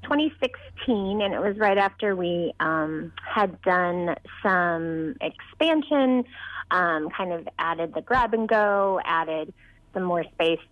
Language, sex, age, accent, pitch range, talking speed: English, female, 30-49, American, 175-230 Hz, 135 wpm